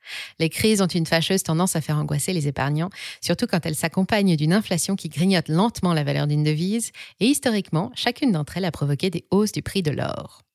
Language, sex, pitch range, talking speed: French, female, 160-215 Hz, 210 wpm